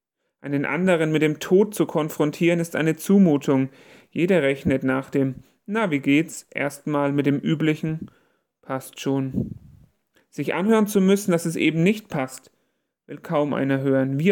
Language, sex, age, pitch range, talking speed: German, male, 40-59, 145-190 Hz, 155 wpm